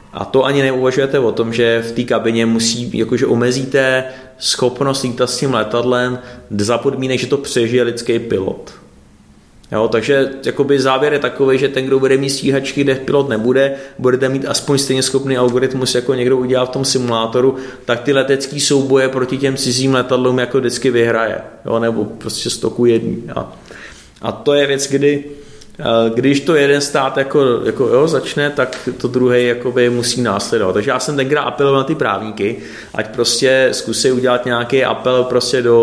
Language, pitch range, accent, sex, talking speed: Czech, 110-130 Hz, native, male, 170 wpm